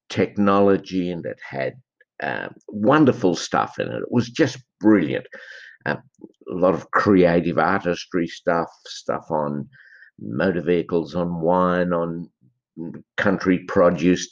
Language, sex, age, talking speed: English, male, 50-69, 120 wpm